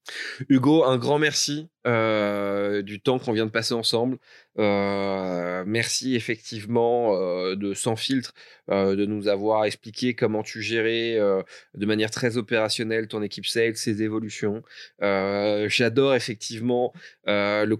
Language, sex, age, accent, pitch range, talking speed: French, male, 20-39, French, 100-115 Hz, 140 wpm